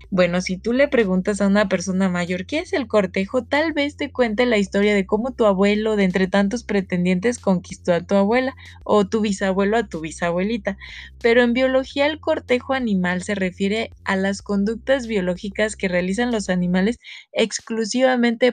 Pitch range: 185-230 Hz